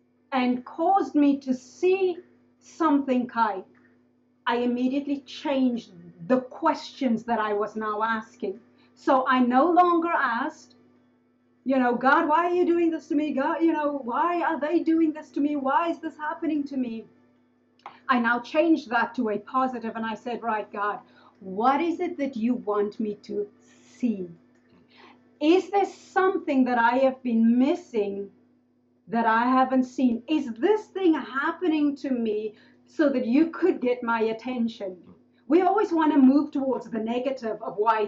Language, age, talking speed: English, 40-59, 165 wpm